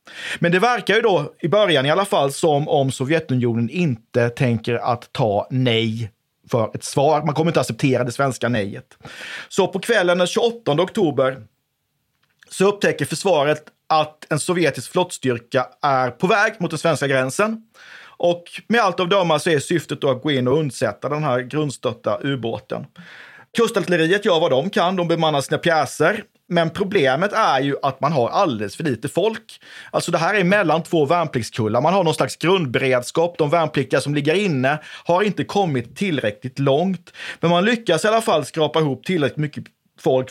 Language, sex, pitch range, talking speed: Swedish, male, 135-180 Hz, 180 wpm